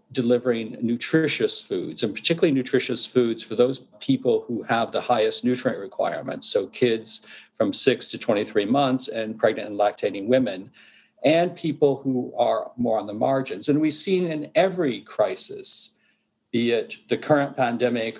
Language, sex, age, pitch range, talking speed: English, male, 50-69, 120-155 Hz, 155 wpm